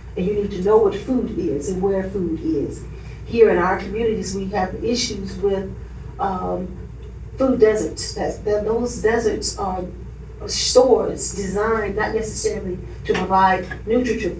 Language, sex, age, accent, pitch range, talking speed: English, female, 40-59, American, 185-235 Hz, 145 wpm